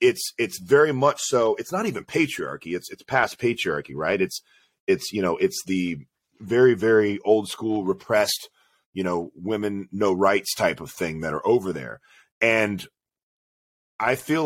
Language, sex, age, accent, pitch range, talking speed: English, male, 30-49, American, 95-120 Hz, 165 wpm